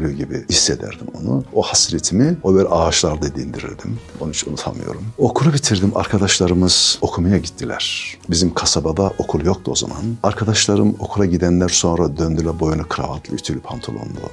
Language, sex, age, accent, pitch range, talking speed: Turkish, male, 60-79, native, 80-105 Hz, 135 wpm